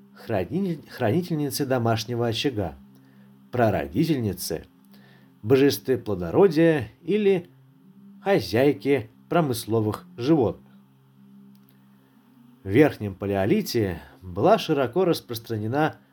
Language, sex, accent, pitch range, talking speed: Russian, male, native, 100-150 Hz, 60 wpm